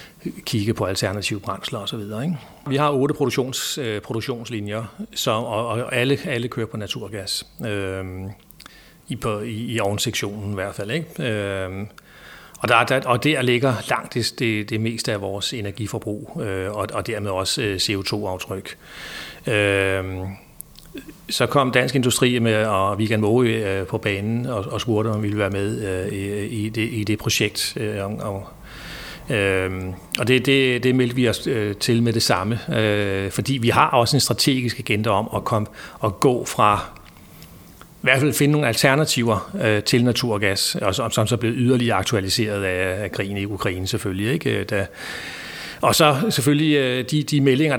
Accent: native